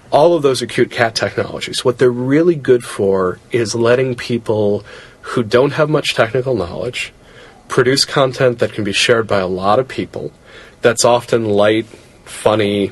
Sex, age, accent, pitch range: male, 30-49, American, 110-140 Hz